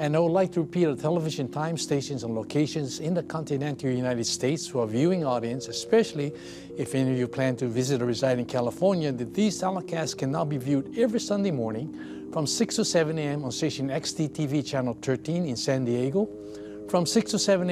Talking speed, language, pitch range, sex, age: 205 wpm, English, 130-170 Hz, male, 60-79